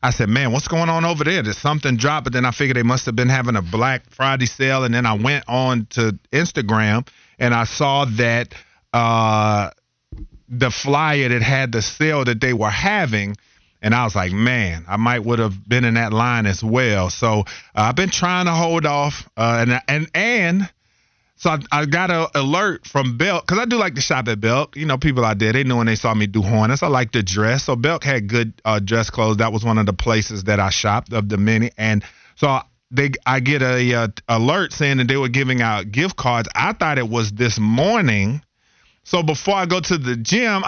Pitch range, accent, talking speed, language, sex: 110-145 Hz, American, 230 wpm, English, male